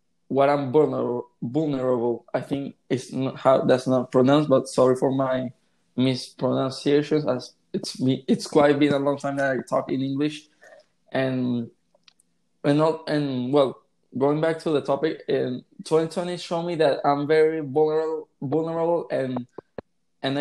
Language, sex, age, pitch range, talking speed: Spanish, male, 20-39, 130-155 Hz, 145 wpm